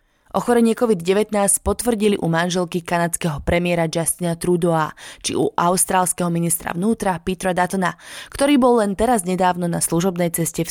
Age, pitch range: 20-39, 165-200 Hz